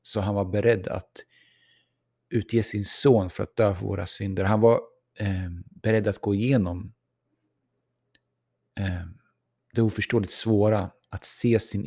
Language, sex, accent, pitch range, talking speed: Swedish, male, native, 95-115 Hz, 145 wpm